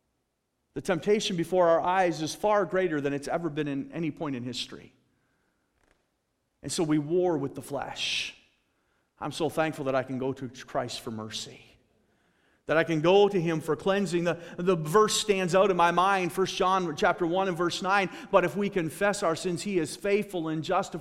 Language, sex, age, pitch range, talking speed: English, male, 40-59, 160-205 Hz, 200 wpm